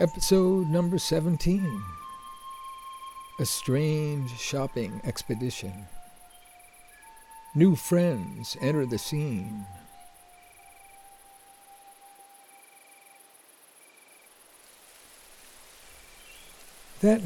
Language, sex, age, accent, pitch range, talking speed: English, male, 60-79, American, 105-170 Hz, 45 wpm